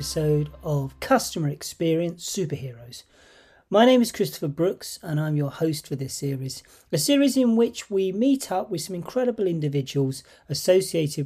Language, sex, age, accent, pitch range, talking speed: English, male, 40-59, British, 140-190 Hz, 150 wpm